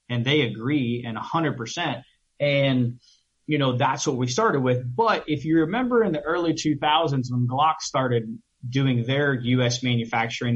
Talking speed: 160 wpm